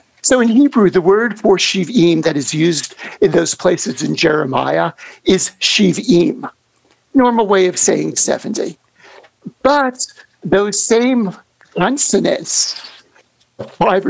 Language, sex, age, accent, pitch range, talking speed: English, male, 60-79, American, 185-245 Hz, 115 wpm